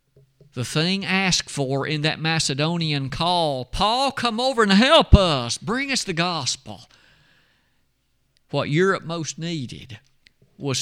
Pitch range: 135-175 Hz